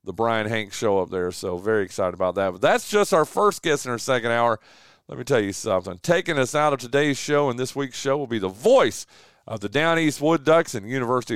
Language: English